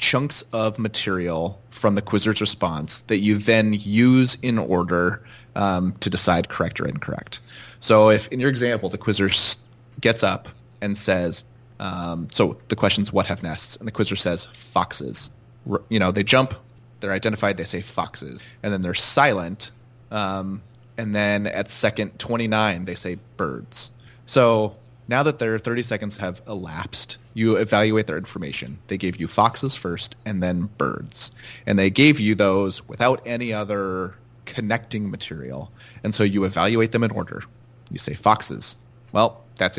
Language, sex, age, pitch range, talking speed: English, male, 30-49, 95-120 Hz, 160 wpm